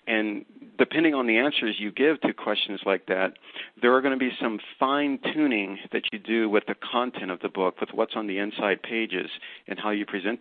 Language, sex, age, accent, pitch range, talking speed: English, male, 50-69, American, 100-125 Hz, 215 wpm